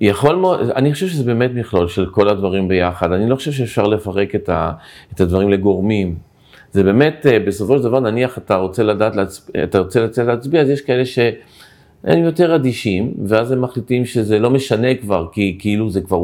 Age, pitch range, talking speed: 40-59, 95-130 Hz, 190 wpm